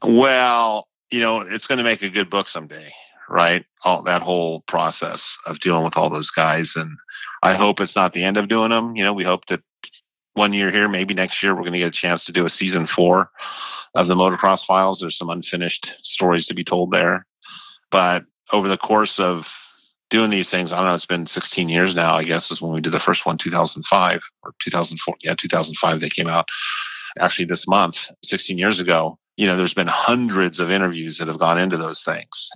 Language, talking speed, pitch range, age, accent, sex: English, 215 wpm, 85-100 Hz, 40-59, American, male